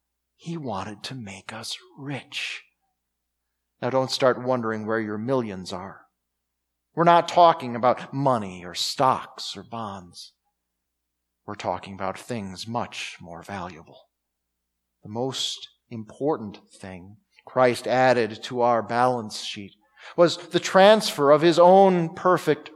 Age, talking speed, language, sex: 40-59, 125 wpm, English, male